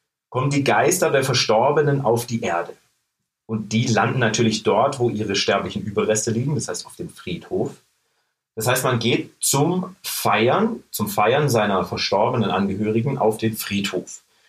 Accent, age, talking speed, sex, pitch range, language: German, 40-59, 155 wpm, male, 95-120 Hz, German